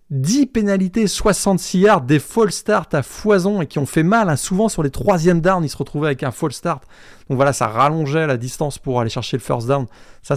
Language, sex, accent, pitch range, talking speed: French, male, French, 125-175 Hz, 230 wpm